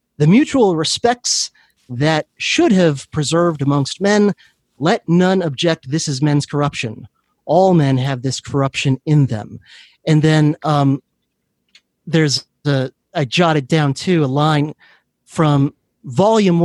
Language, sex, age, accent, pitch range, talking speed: English, male, 30-49, American, 135-175 Hz, 125 wpm